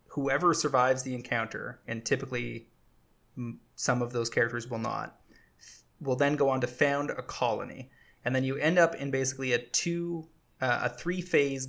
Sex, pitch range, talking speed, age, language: male, 120-140 Hz, 165 wpm, 20-39, English